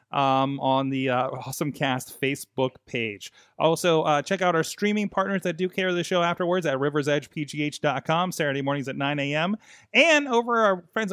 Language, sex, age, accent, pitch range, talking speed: English, male, 30-49, American, 135-200 Hz, 175 wpm